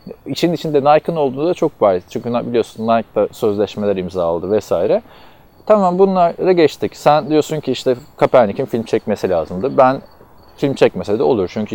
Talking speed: 160 wpm